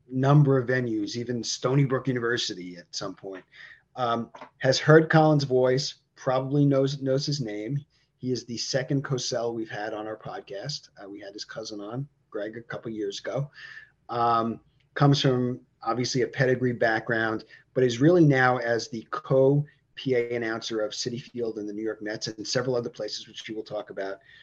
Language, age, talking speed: English, 30-49, 180 wpm